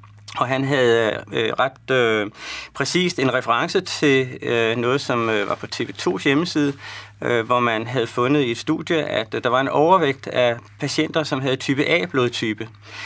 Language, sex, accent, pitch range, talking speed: Danish, male, native, 115-145 Hz, 175 wpm